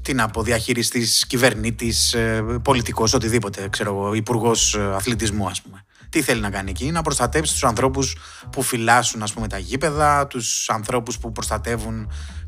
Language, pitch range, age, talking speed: Greek, 105-135 Hz, 20-39, 135 wpm